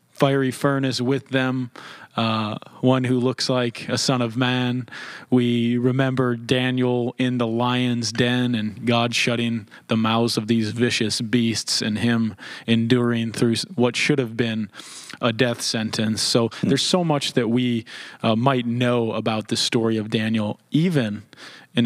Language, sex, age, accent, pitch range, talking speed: English, male, 30-49, American, 115-125 Hz, 155 wpm